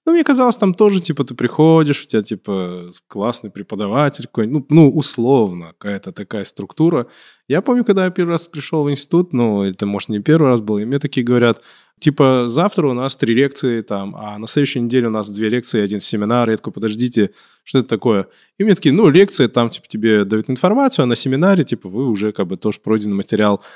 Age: 20-39